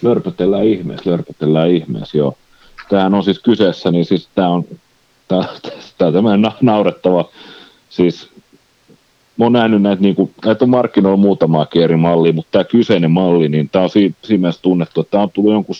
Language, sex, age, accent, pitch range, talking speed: Finnish, male, 40-59, native, 75-95 Hz, 165 wpm